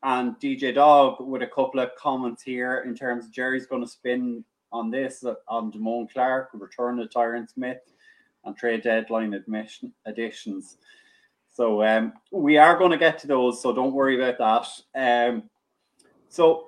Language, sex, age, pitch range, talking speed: English, male, 20-39, 110-135 Hz, 165 wpm